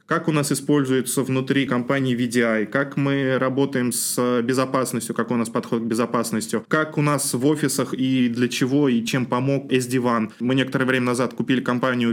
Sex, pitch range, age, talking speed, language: male, 120-140 Hz, 20-39, 180 wpm, Russian